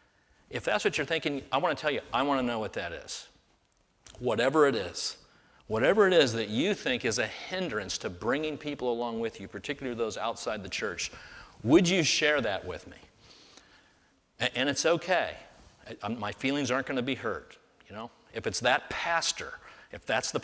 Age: 40-59